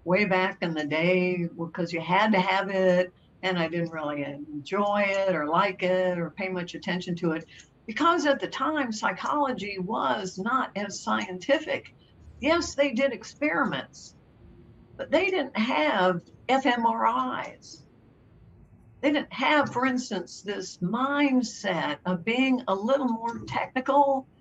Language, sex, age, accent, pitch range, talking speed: English, female, 60-79, American, 185-270 Hz, 140 wpm